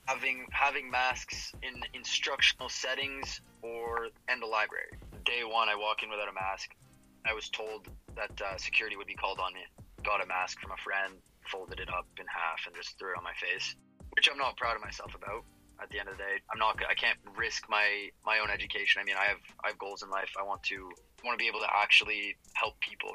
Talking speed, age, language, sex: 235 wpm, 20-39, English, male